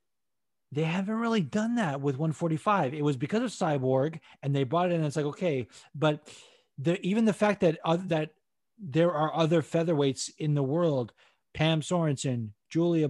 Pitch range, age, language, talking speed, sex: 145-185 Hz, 30-49, English, 180 wpm, male